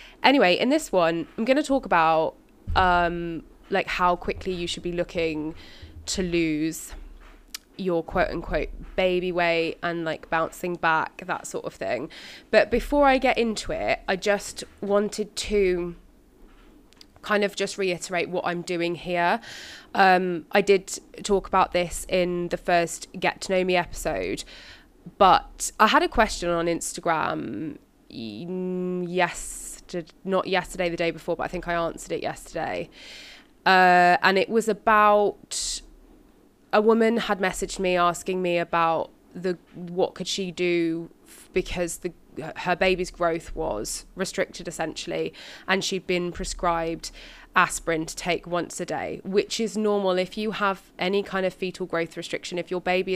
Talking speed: 155 wpm